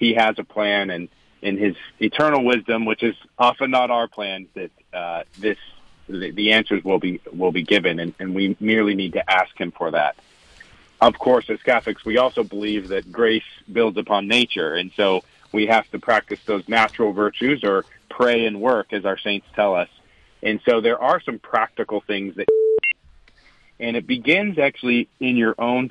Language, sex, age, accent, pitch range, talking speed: English, male, 40-59, American, 100-120 Hz, 185 wpm